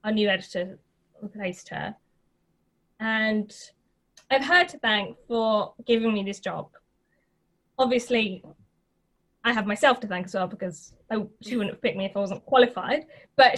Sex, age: female, 20-39